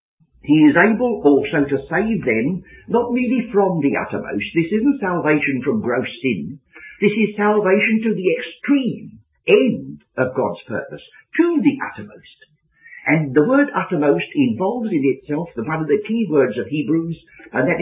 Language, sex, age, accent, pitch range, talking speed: English, male, 60-79, British, 135-210 Hz, 160 wpm